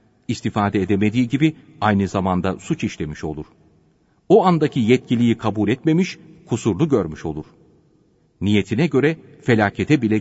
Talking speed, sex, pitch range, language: 120 wpm, male, 100-155 Hz, Turkish